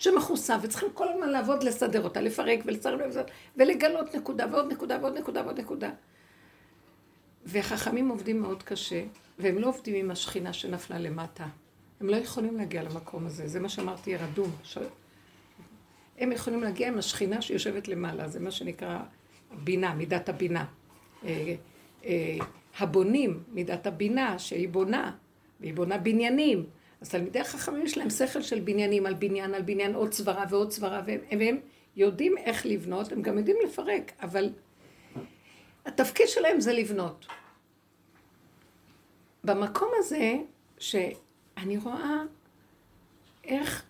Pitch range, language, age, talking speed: 185-255 Hz, Hebrew, 50-69, 130 wpm